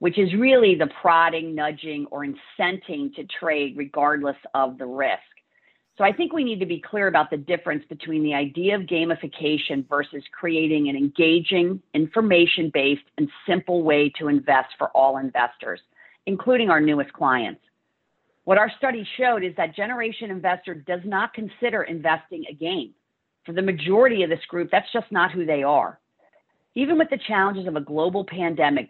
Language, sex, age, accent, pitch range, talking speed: English, female, 40-59, American, 150-200 Hz, 170 wpm